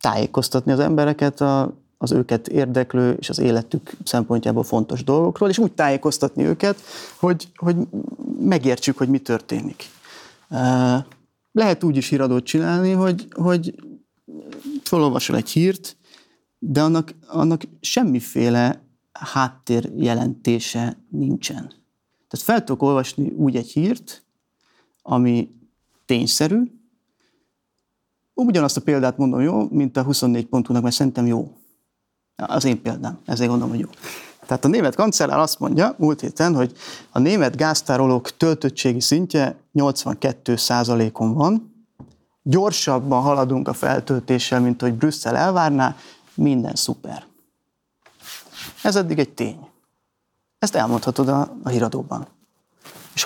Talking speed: 115 wpm